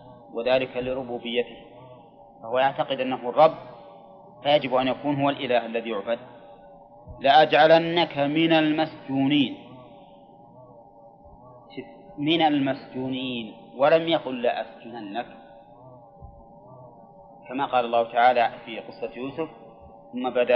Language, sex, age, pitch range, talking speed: Arabic, male, 30-49, 120-145 Hz, 90 wpm